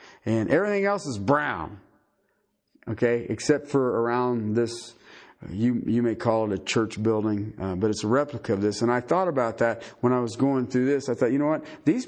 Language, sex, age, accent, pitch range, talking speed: English, male, 50-69, American, 125-190 Hz, 210 wpm